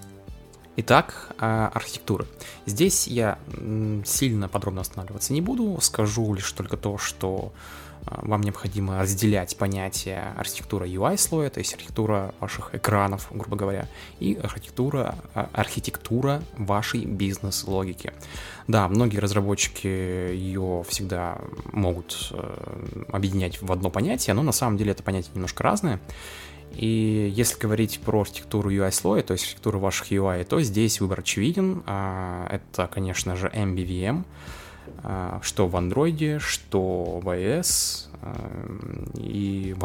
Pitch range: 90-110 Hz